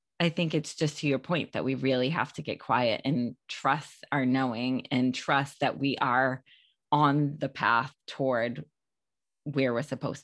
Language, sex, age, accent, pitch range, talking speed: English, female, 20-39, American, 130-150 Hz, 175 wpm